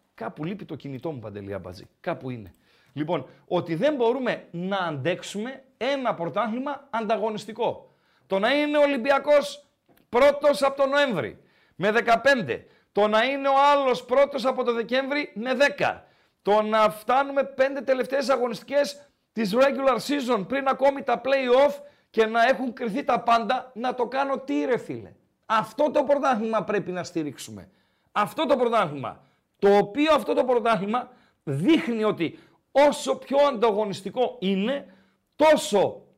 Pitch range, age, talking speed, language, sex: 210-275 Hz, 40-59, 145 wpm, Greek, male